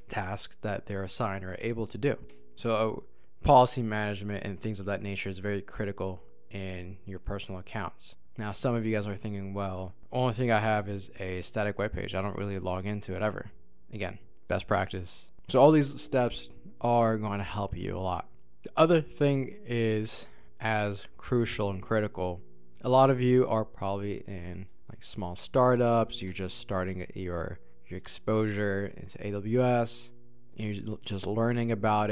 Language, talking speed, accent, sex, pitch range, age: English, 175 wpm, American, male, 95-120 Hz, 20-39